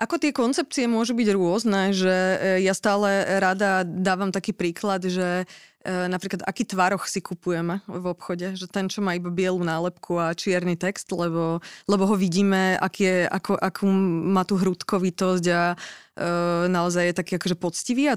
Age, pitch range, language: 20-39, 185-205 Hz, Slovak